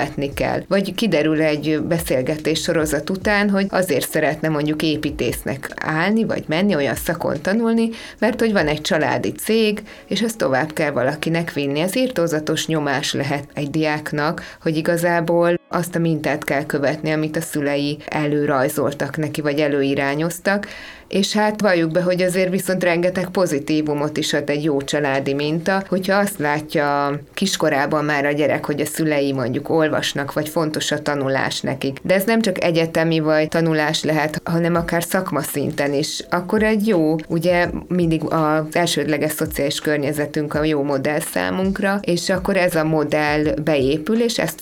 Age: 20-39